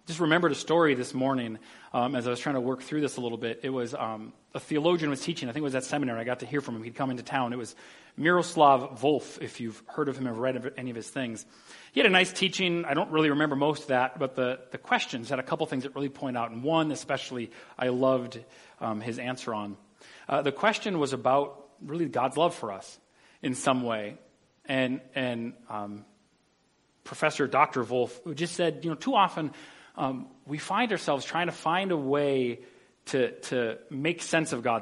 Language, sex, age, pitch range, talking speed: English, male, 40-59, 120-160 Hz, 225 wpm